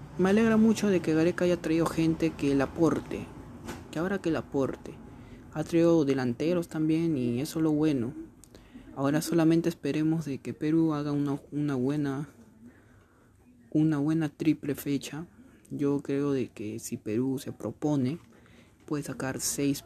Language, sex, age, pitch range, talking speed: Spanish, male, 30-49, 125-165 Hz, 155 wpm